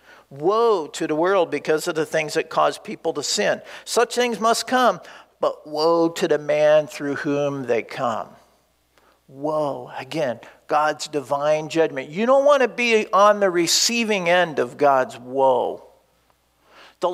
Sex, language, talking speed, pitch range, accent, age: male, English, 155 wpm, 145-200 Hz, American, 50-69